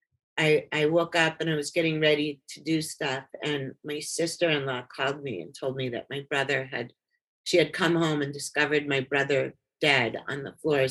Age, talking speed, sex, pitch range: 50-69, 210 wpm, female, 145-165 Hz